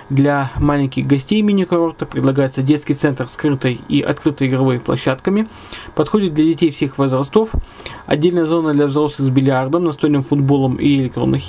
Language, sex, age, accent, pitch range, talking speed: Russian, male, 20-39, native, 130-160 Hz, 145 wpm